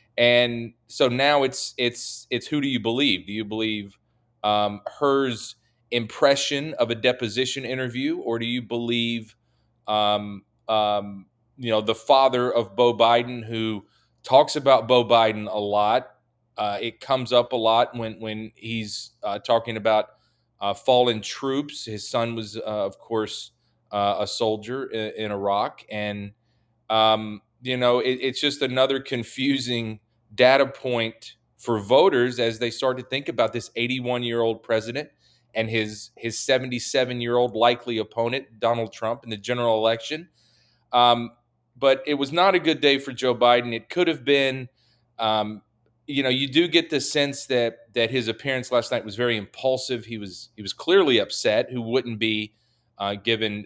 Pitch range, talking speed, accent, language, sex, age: 110-125 Hz, 160 wpm, American, English, male, 30-49